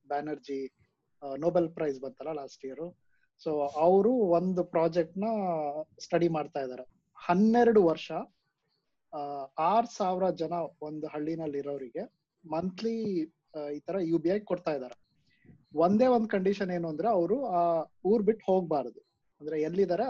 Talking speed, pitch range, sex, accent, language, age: 125 wpm, 150-205 Hz, male, native, Kannada, 20-39